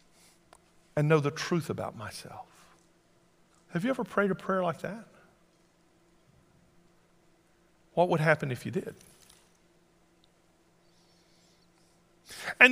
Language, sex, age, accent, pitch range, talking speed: English, male, 50-69, American, 170-245 Hz, 100 wpm